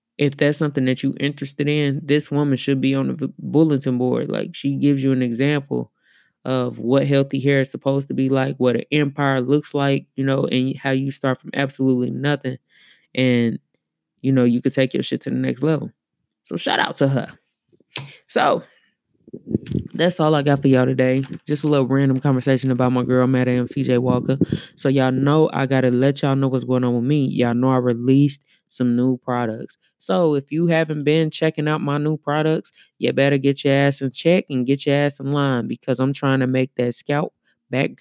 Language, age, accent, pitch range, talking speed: English, 20-39, American, 130-145 Hz, 205 wpm